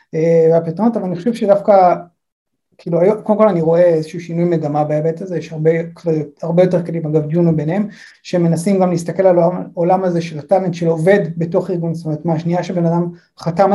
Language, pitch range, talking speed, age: English, 165-205 Hz, 185 wpm, 30-49